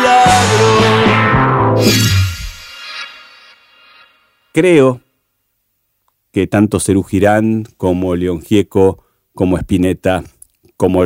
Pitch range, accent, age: 95-120 Hz, Argentinian, 40-59